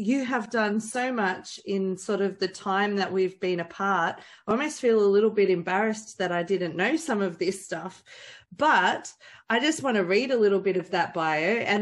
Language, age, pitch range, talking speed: English, 30-49, 185-225 Hz, 215 wpm